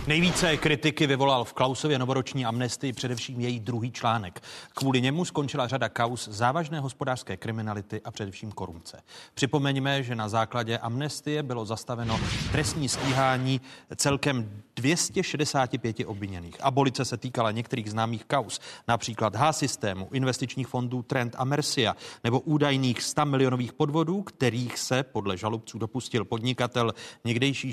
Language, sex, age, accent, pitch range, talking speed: Czech, male, 40-59, native, 110-135 Hz, 130 wpm